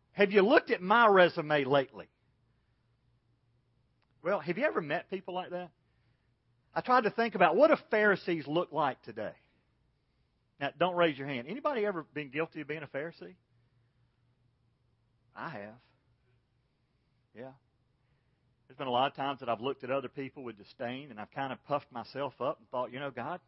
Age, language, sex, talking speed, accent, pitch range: 40-59, English, male, 175 wpm, American, 125-180 Hz